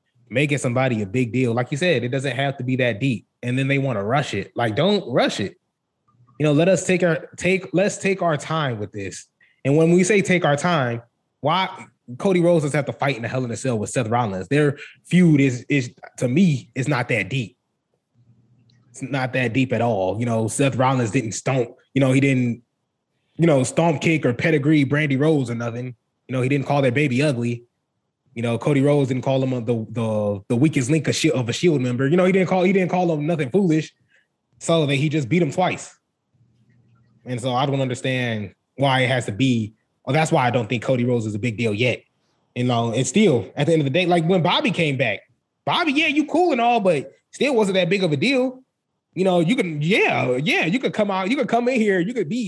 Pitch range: 125-175 Hz